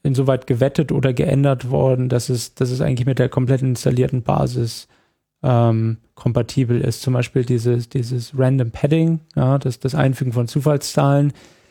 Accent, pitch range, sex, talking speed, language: German, 125-145 Hz, male, 145 wpm, German